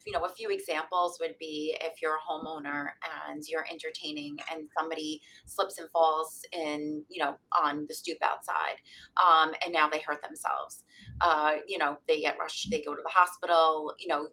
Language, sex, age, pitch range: English, female, 30-49, 155-180 Hz